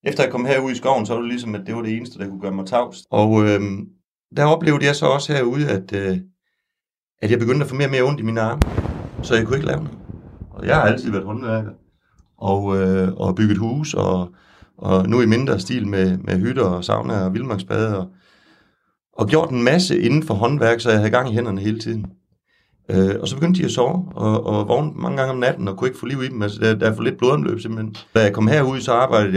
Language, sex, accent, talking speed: Danish, male, native, 250 wpm